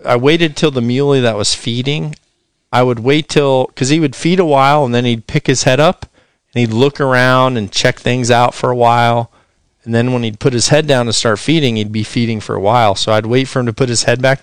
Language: English